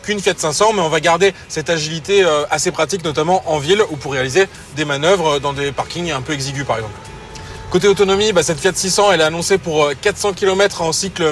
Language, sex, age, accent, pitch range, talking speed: French, male, 30-49, French, 155-190 Hz, 205 wpm